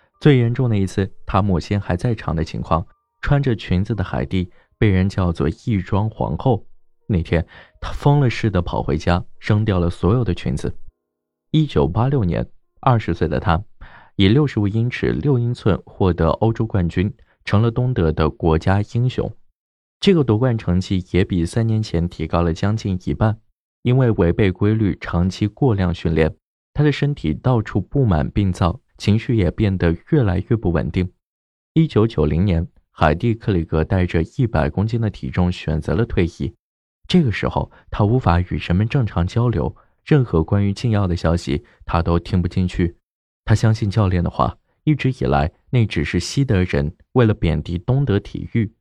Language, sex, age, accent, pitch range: Chinese, male, 20-39, native, 85-115 Hz